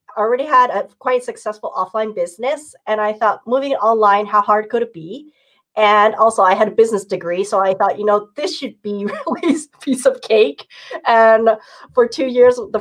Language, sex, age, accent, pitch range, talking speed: English, female, 30-49, American, 175-230 Hz, 190 wpm